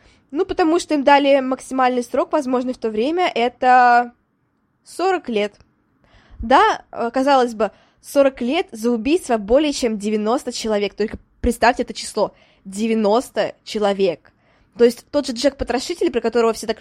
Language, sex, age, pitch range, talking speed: Russian, female, 20-39, 205-265 Hz, 145 wpm